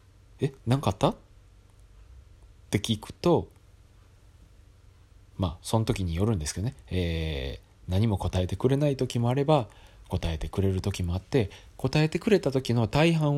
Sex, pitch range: male, 90-110 Hz